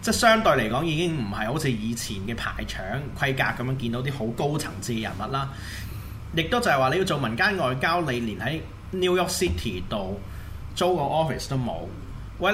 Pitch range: 110-155 Hz